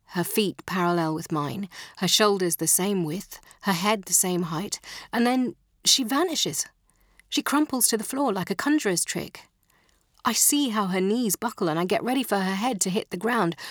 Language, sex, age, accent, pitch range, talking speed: English, female, 40-59, British, 180-250 Hz, 195 wpm